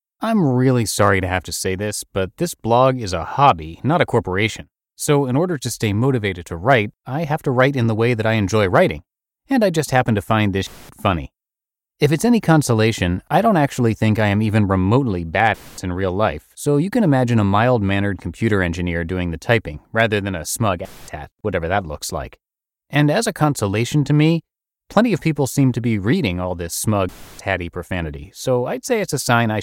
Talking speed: 215 wpm